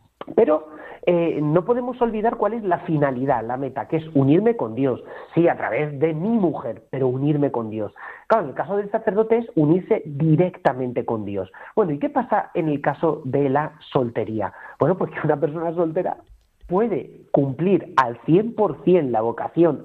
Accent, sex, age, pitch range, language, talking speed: Spanish, male, 40-59, 130-175 Hz, Spanish, 175 wpm